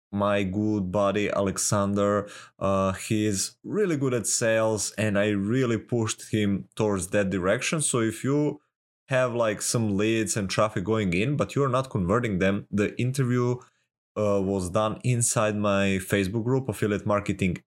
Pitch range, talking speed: 95-120 Hz, 155 wpm